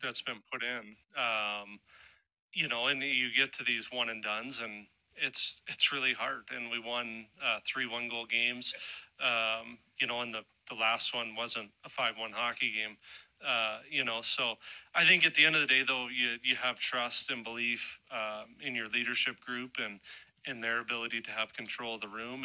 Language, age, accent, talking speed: English, 30-49, American, 200 wpm